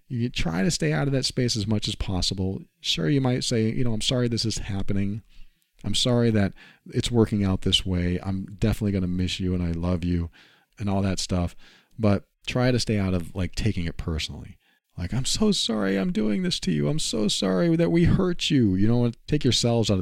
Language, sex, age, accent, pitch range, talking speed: English, male, 40-59, American, 90-115 Hz, 230 wpm